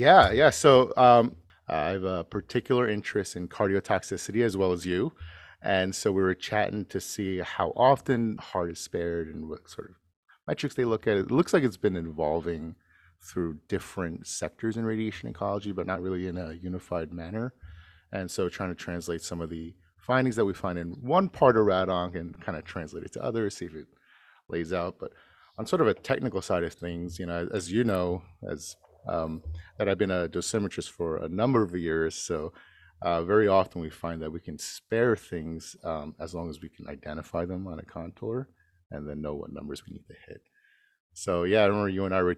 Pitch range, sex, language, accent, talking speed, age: 85-100 Hz, male, English, American, 210 wpm, 30-49